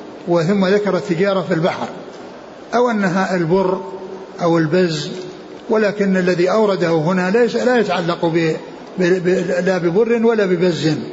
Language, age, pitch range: Arabic, 60-79, 165-200 Hz